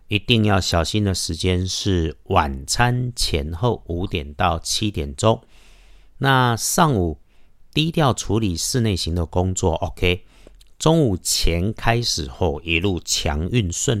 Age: 50-69